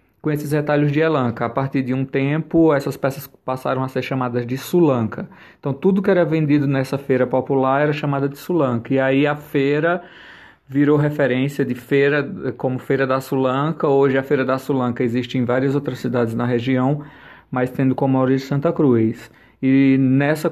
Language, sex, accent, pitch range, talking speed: Portuguese, male, Brazilian, 125-145 Hz, 180 wpm